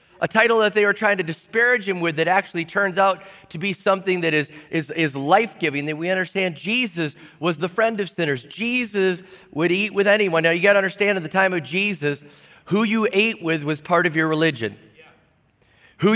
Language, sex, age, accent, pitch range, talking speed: English, male, 30-49, American, 165-210 Hz, 210 wpm